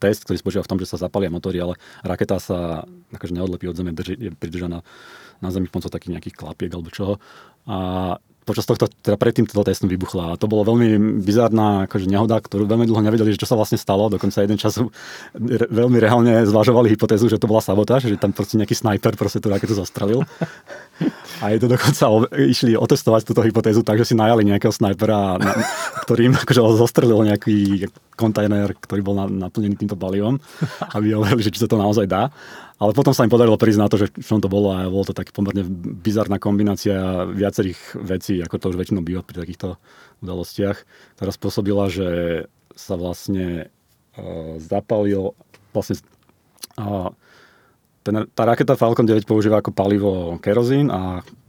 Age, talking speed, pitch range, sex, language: 30-49, 175 wpm, 95-115 Hz, male, Slovak